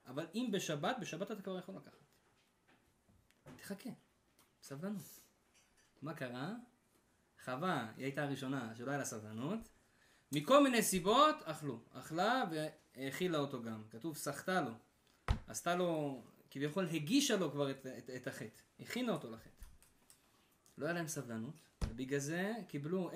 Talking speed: 130 wpm